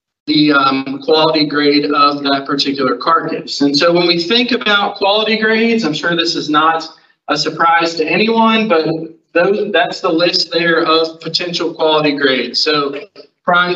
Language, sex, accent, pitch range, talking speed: English, male, American, 150-175 Hz, 155 wpm